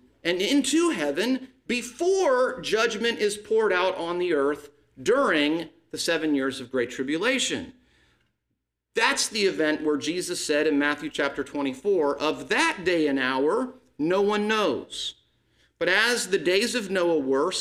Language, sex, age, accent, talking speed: English, male, 50-69, American, 145 wpm